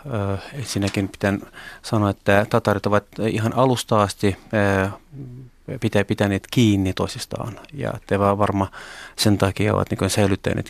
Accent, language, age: native, Finnish, 30-49